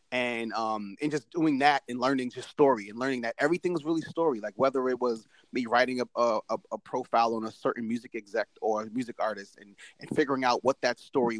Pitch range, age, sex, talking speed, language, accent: 110-135 Hz, 30-49, male, 230 wpm, English, American